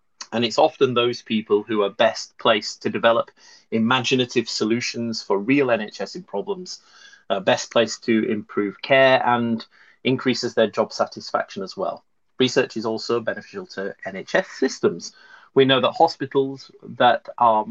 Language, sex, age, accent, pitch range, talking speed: English, male, 30-49, British, 110-140 Hz, 150 wpm